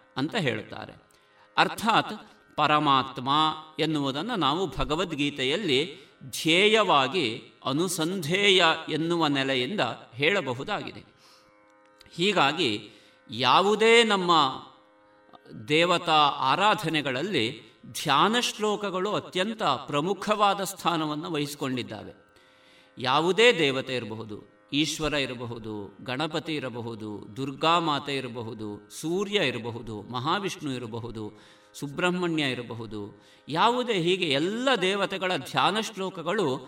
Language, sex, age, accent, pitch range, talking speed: Kannada, male, 50-69, native, 120-185 Hz, 70 wpm